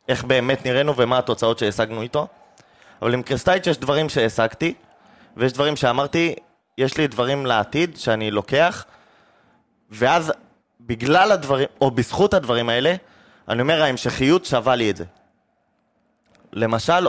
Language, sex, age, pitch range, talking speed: Hebrew, male, 20-39, 115-155 Hz, 130 wpm